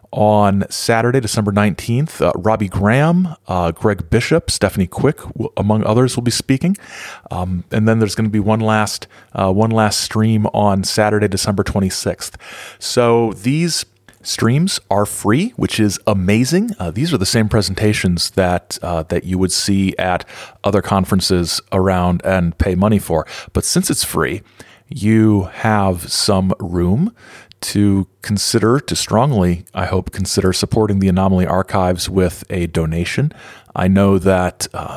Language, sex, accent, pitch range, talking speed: English, male, American, 90-110 Hz, 155 wpm